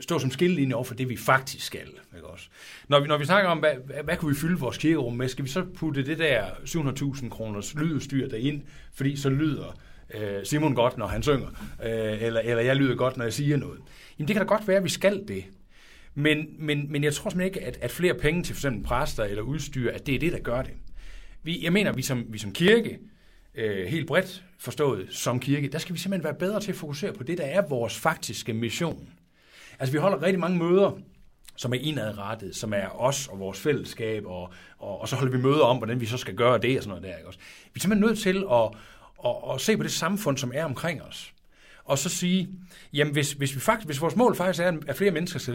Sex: male